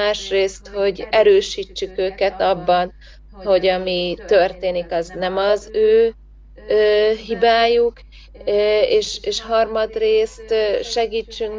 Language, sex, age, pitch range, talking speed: Hungarian, female, 30-49, 185-220 Hz, 90 wpm